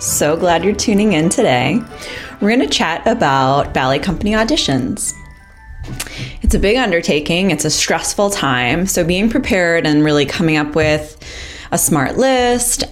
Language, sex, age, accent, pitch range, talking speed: English, female, 20-39, American, 135-175 Hz, 155 wpm